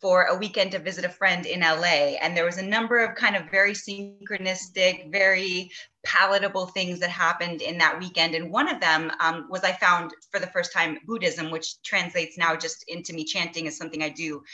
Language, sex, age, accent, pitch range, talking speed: English, female, 20-39, American, 160-195 Hz, 210 wpm